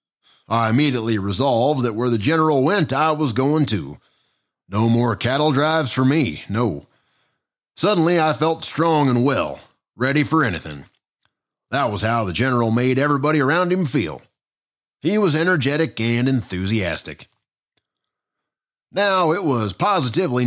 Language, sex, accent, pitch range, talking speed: English, male, American, 110-150 Hz, 140 wpm